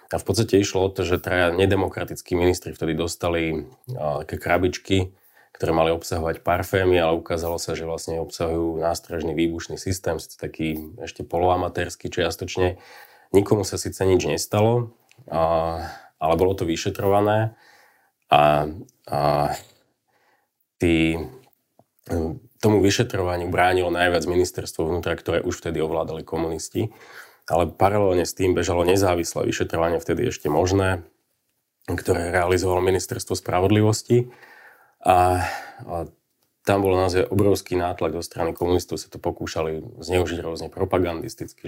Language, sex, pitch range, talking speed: Slovak, male, 80-95 Hz, 125 wpm